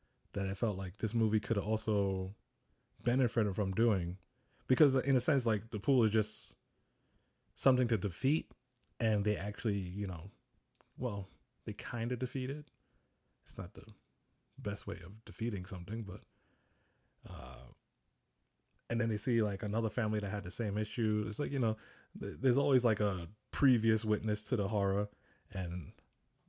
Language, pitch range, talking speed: English, 100-125 Hz, 160 wpm